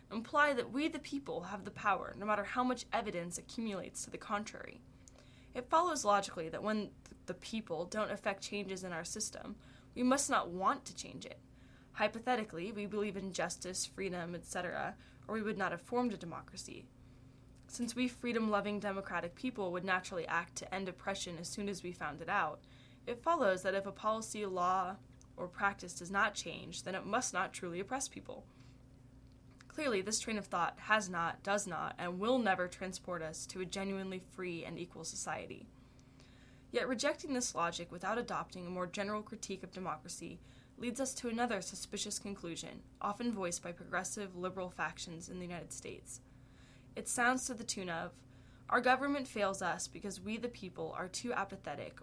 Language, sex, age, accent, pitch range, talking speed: English, female, 10-29, American, 170-220 Hz, 180 wpm